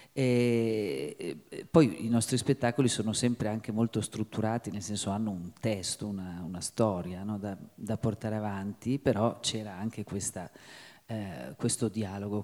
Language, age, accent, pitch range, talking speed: Italian, 40-59, native, 110-125 Hz, 145 wpm